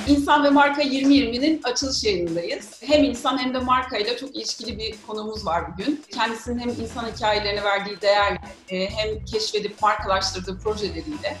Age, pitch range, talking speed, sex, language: 40-59, 215-300 Hz, 140 wpm, female, Turkish